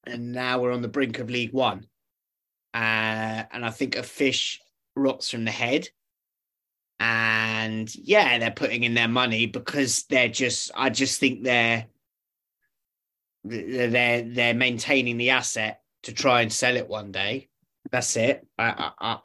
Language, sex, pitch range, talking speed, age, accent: English, male, 120-155 Hz, 145 wpm, 30-49, British